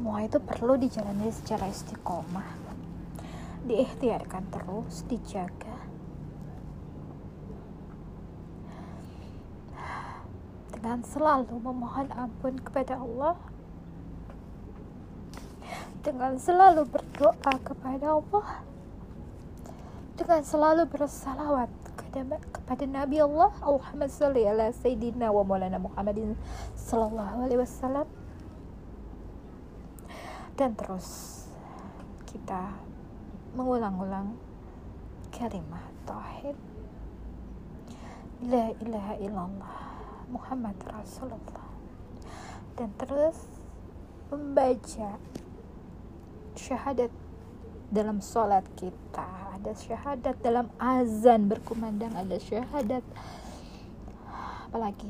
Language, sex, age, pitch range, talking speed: Indonesian, female, 20-39, 200-275 Hz, 60 wpm